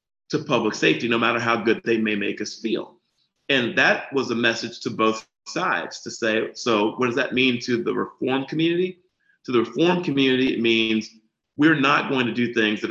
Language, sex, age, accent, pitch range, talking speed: English, male, 30-49, American, 110-125 Hz, 205 wpm